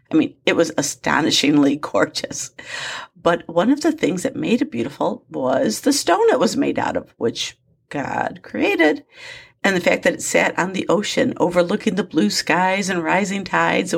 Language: English